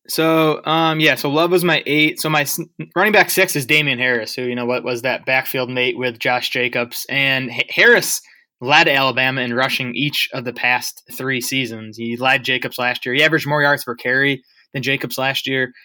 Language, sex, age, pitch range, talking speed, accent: English, male, 20-39, 120-140 Hz, 205 wpm, American